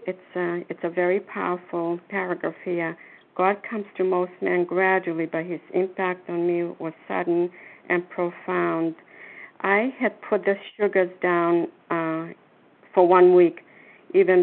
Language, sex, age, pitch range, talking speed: English, female, 60-79, 165-185 Hz, 140 wpm